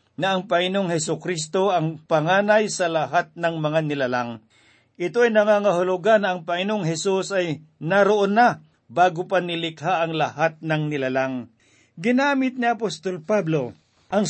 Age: 50-69